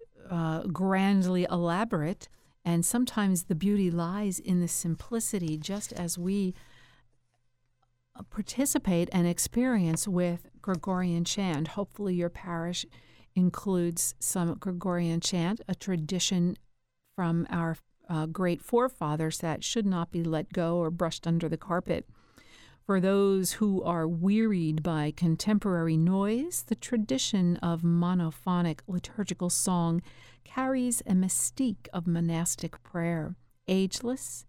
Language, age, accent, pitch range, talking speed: English, 50-69, American, 170-200 Hz, 115 wpm